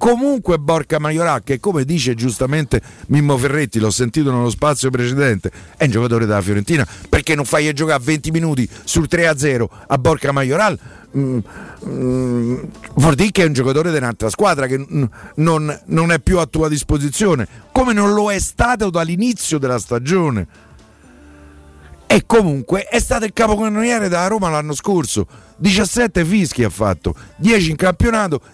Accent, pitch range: native, 125-175 Hz